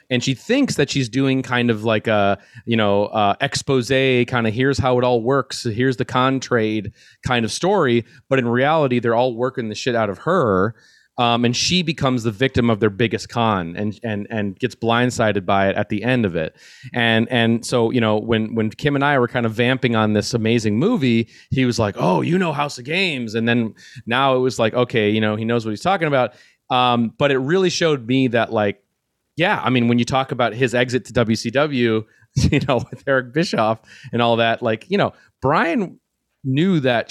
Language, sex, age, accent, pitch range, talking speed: English, male, 30-49, American, 115-130 Hz, 220 wpm